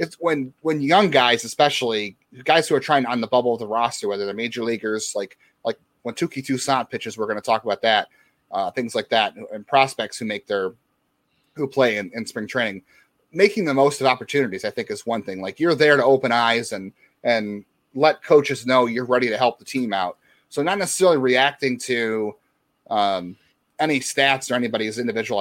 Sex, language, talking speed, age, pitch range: male, English, 205 wpm, 30-49, 115-135 Hz